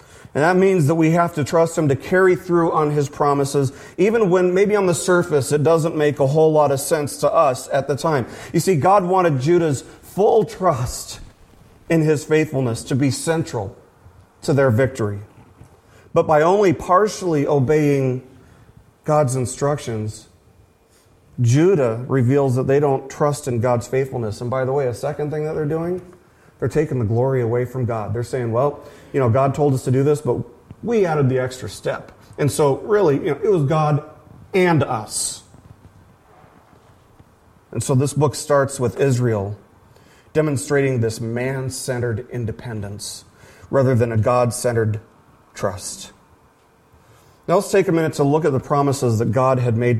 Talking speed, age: 170 wpm, 40-59